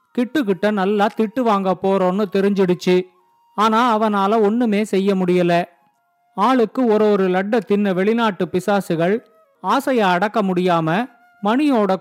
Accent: native